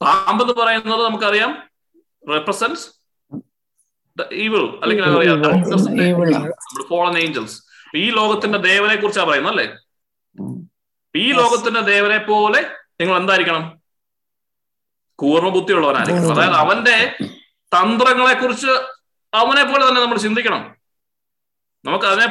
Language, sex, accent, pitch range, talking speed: Malayalam, male, native, 200-240 Hz, 65 wpm